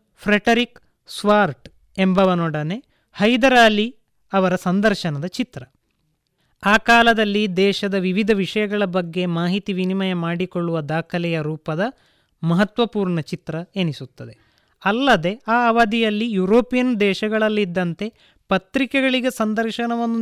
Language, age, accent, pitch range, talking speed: Kannada, 20-39, native, 180-225 Hz, 85 wpm